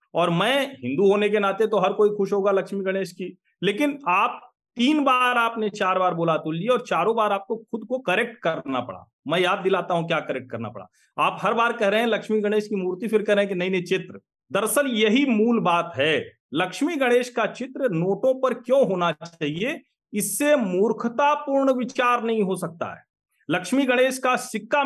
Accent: native